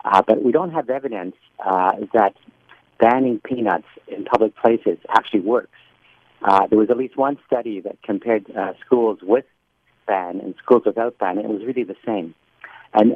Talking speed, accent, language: 180 wpm, American, English